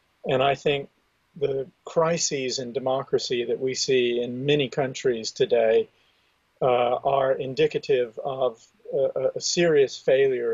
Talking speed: 125 wpm